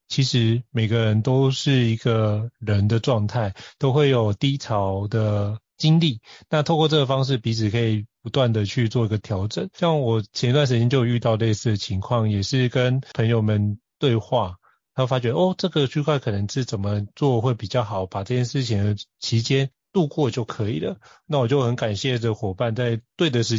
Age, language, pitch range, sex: 30-49, Chinese, 110-140 Hz, male